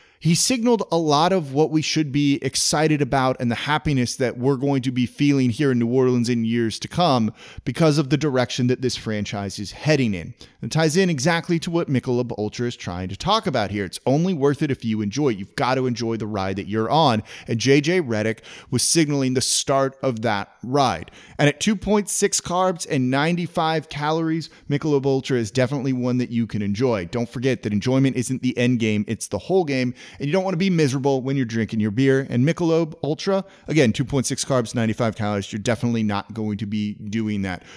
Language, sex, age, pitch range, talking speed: English, male, 30-49, 115-155 Hz, 215 wpm